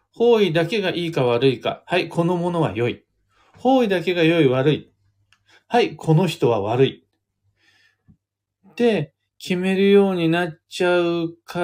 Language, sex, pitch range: Japanese, male, 105-165 Hz